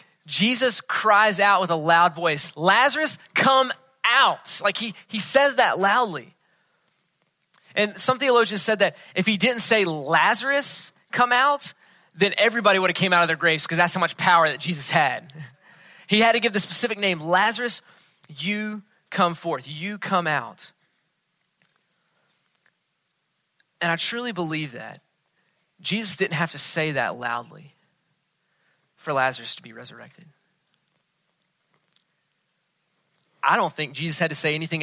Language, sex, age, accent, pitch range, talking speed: English, male, 20-39, American, 150-195 Hz, 145 wpm